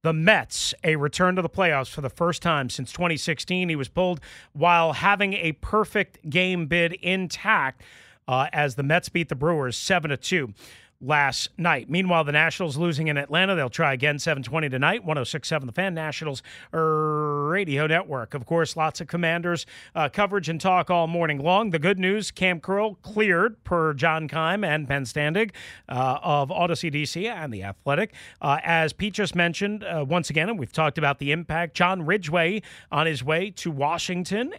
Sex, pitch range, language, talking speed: male, 150-185 Hz, English, 175 wpm